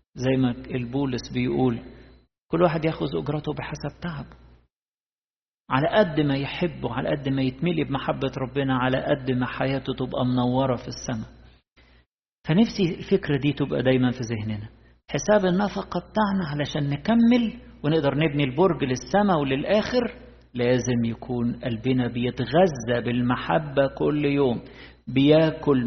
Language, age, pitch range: Arabic, 50-69, 125-160 Hz